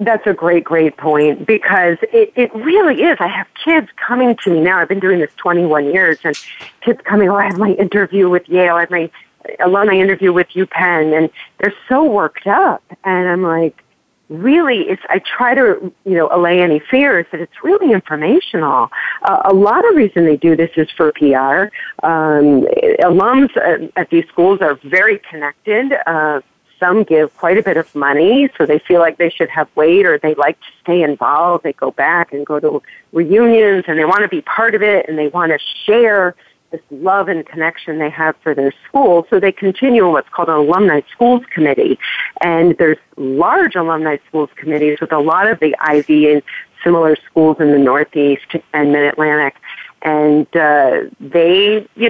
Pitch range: 155-205 Hz